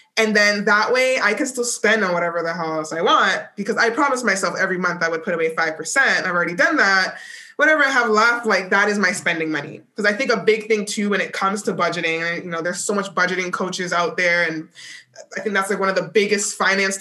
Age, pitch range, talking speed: 20-39, 180-225 Hz, 250 wpm